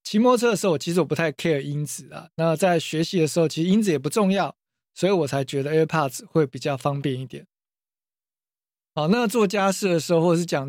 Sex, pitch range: male, 140-170 Hz